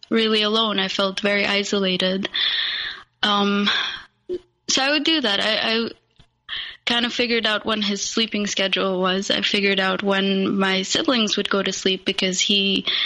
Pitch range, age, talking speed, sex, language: 200-245 Hz, 20-39, 160 wpm, female, English